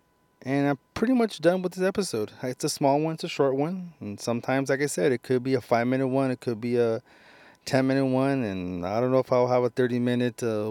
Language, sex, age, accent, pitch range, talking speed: English, male, 30-49, American, 105-130 Hz, 260 wpm